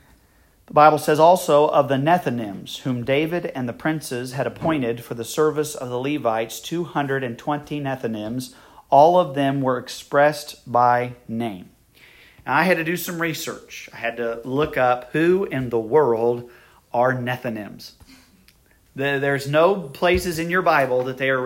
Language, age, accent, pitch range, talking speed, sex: English, 40-59, American, 125-160 Hz, 155 wpm, male